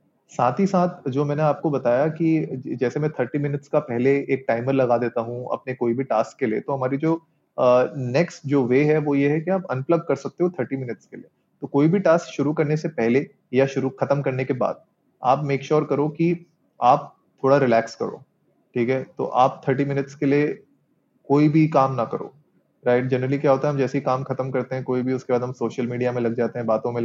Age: 30-49